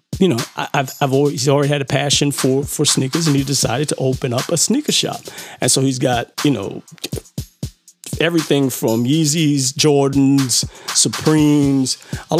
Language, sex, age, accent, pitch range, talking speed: English, male, 40-59, American, 135-200 Hz, 165 wpm